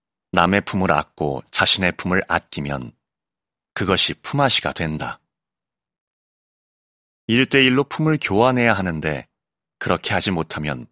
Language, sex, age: Korean, male, 30-49